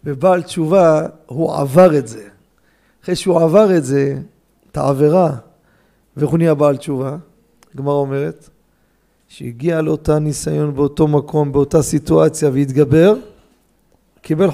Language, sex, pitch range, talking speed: Hebrew, male, 150-195 Hz, 115 wpm